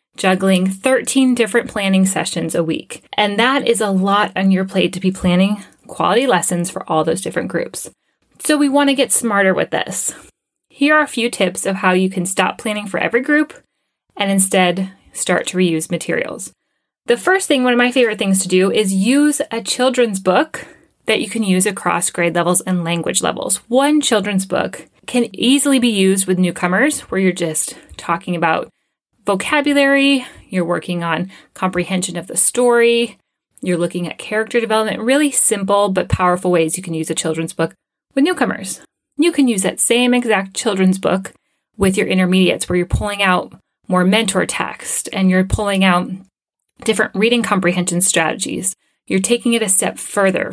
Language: English